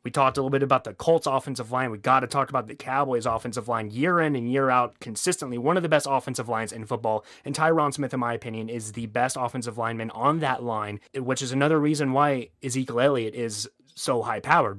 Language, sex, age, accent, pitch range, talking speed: English, male, 30-49, American, 120-150 Hz, 230 wpm